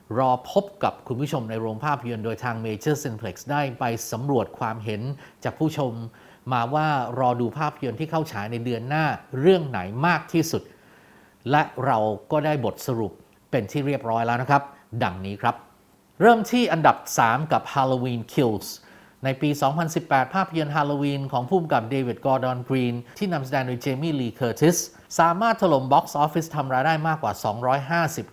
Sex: male